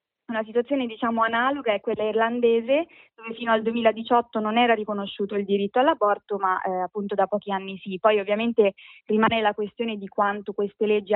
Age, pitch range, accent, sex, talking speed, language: 20-39, 195-225 Hz, native, female, 180 wpm, Italian